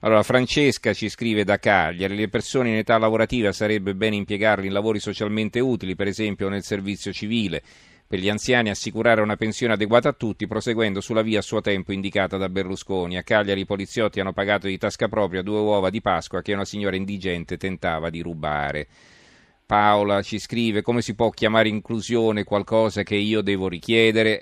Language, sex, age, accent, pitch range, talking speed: Italian, male, 40-59, native, 90-110 Hz, 180 wpm